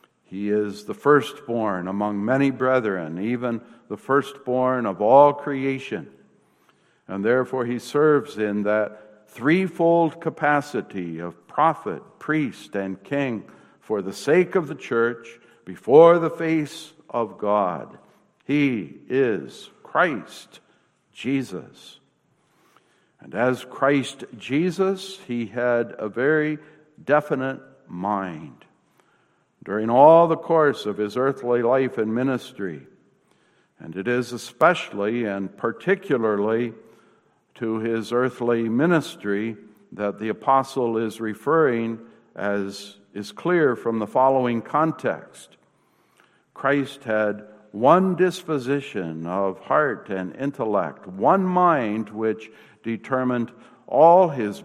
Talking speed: 105 wpm